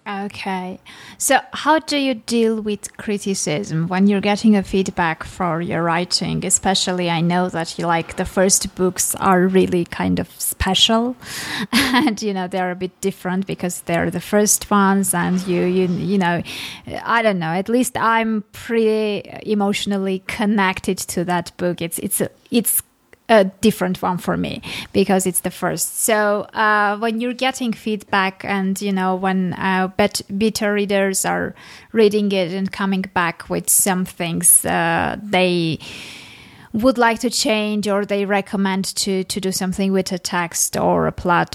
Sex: female